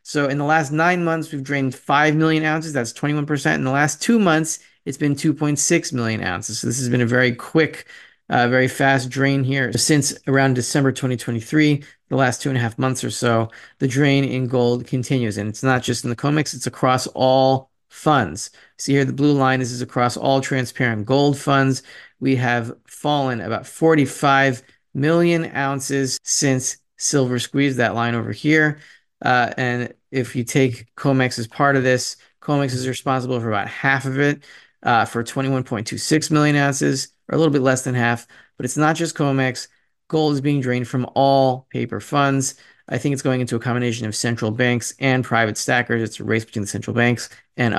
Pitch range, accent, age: 120-145 Hz, American, 30-49